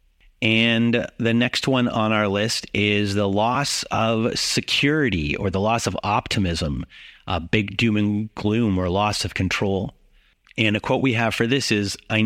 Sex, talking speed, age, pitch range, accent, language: male, 170 wpm, 30-49, 100-120 Hz, American, English